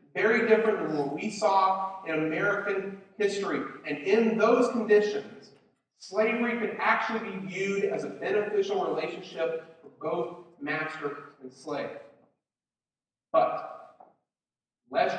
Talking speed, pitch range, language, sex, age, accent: 115 wpm, 155-210 Hz, English, male, 40-59, American